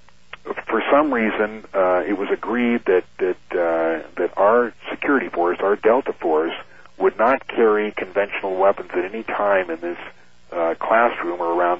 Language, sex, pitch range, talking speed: English, male, 85-110 Hz, 160 wpm